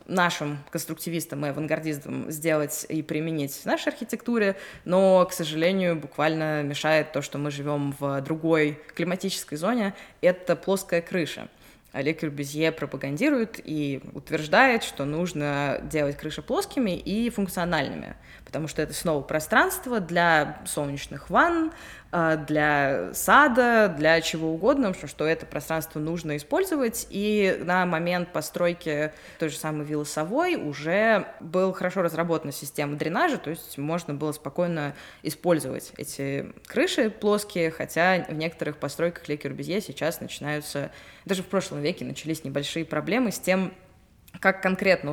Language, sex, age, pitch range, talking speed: Russian, female, 20-39, 150-190 Hz, 130 wpm